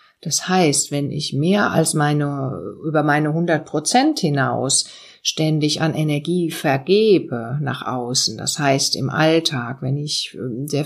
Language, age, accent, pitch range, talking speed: German, 50-69, German, 145-185 Hz, 140 wpm